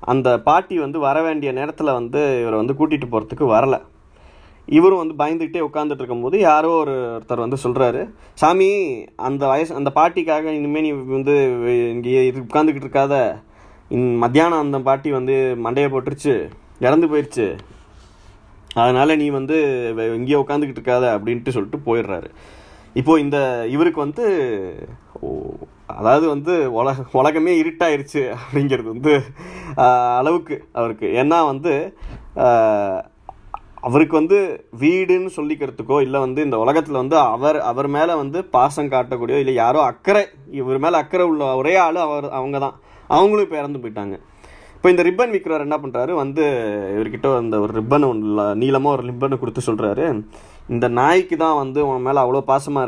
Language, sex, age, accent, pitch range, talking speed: Tamil, male, 20-39, native, 125-160 Hz, 135 wpm